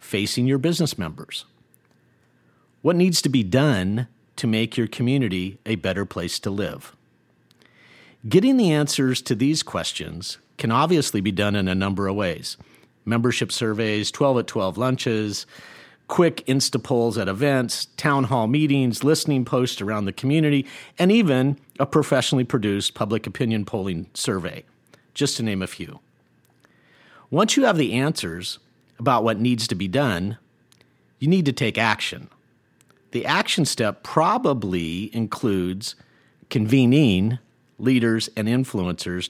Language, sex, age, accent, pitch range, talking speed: English, male, 50-69, American, 100-140 Hz, 140 wpm